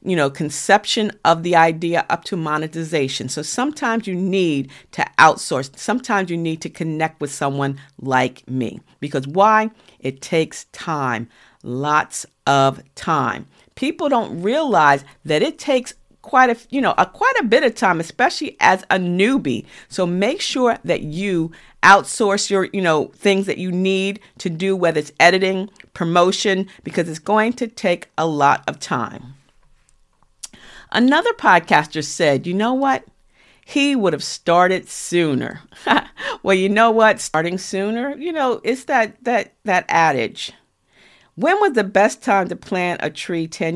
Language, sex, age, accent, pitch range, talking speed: English, female, 50-69, American, 155-215 Hz, 155 wpm